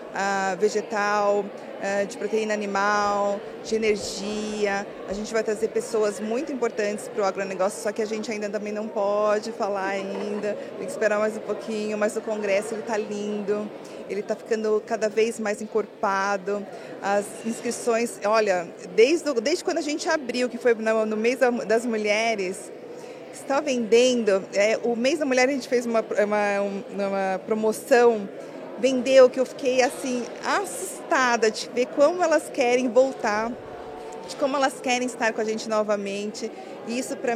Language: Portuguese